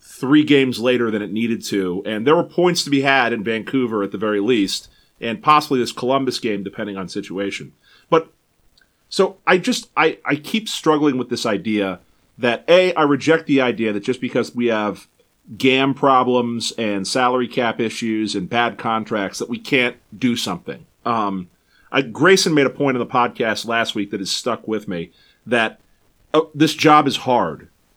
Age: 40-59